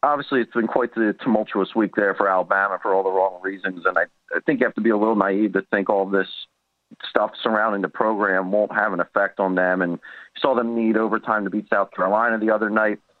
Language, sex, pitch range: English, male, 105-125 Hz